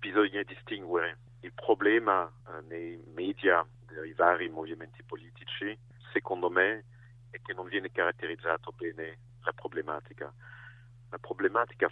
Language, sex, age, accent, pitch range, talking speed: Italian, male, 50-69, French, 100-120 Hz, 110 wpm